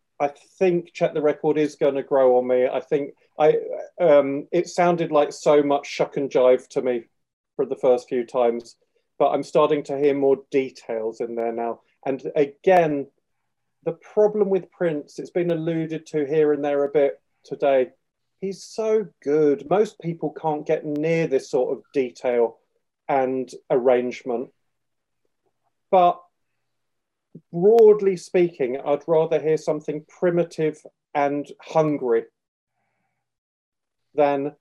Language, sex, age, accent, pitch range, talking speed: English, male, 40-59, British, 140-170 Hz, 140 wpm